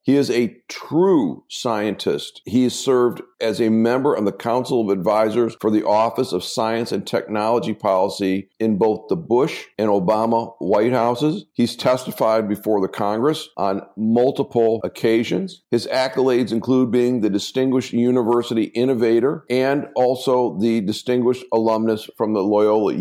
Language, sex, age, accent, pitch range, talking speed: English, male, 50-69, American, 105-125 Hz, 145 wpm